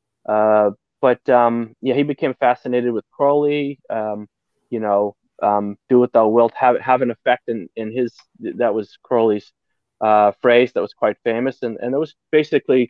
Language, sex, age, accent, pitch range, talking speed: English, male, 20-39, American, 110-135 Hz, 175 wpm